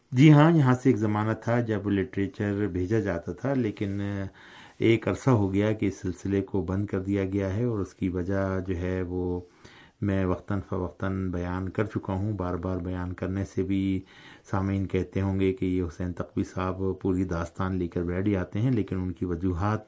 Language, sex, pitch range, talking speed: Urdu, male, 90-105 Hz, 200 wpm